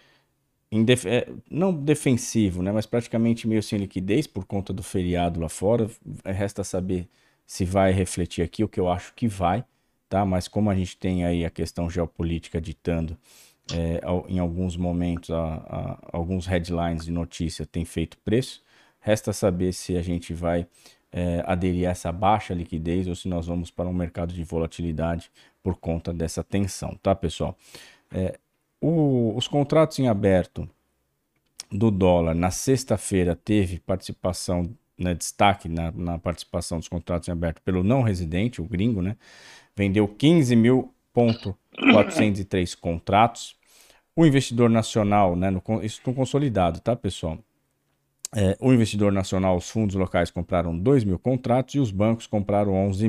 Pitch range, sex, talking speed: 85-110 Hz, male, 145 wpm